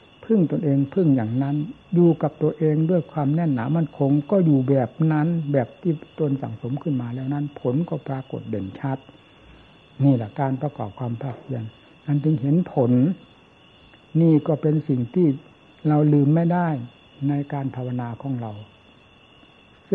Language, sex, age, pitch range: Thai, male, 60-79, 130-155 Hz